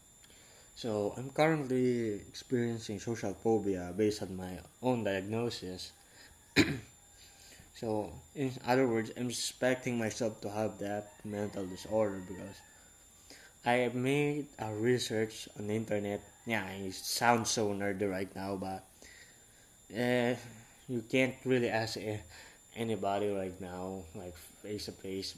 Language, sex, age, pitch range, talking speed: English, male, 20-39, 100-125 Hz, 125 wpm